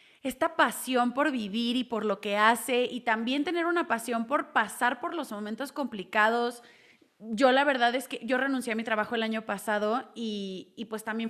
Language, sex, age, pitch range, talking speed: Spanish, female, 20-39, 220-260 Hz, 195 wpm